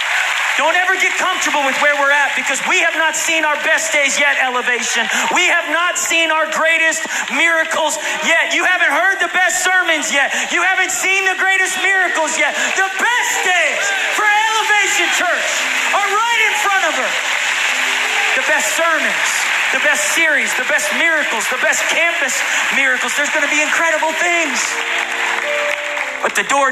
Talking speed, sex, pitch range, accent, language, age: 165 wpm, male, 245-365 Hz, American, English, 40-59